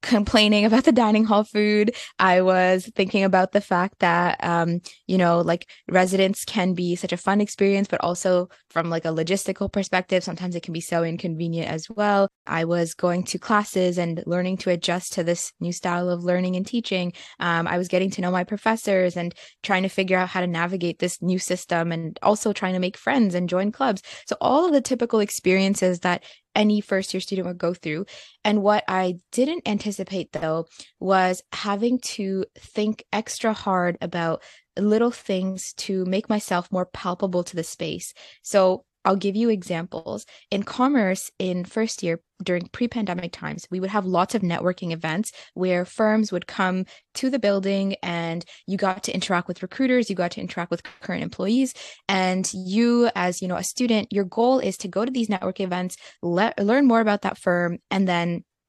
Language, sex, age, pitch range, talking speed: English, female, 20-39, 180-210 Hz, 190 wpm